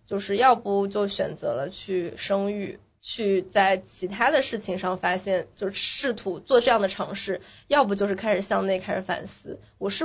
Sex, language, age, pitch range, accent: female, Chinese, 20-39, 190-245 Hz, native